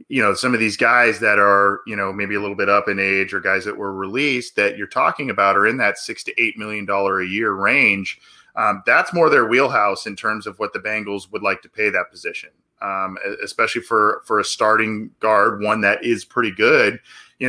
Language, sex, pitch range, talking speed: English, male, 100-125 Hz, 230 wpm